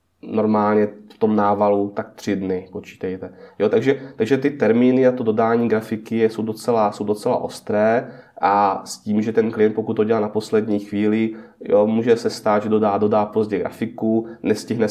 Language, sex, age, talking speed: Czech, male, 20-39, 165 wpm